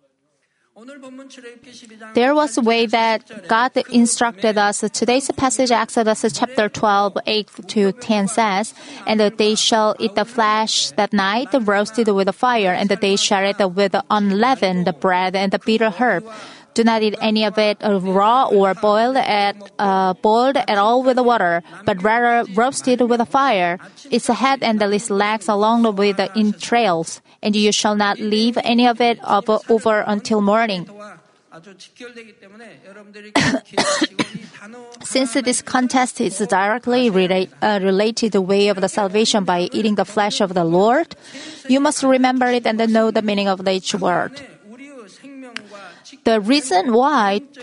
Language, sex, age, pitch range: Korean, female, 30-49, 205-245 Hz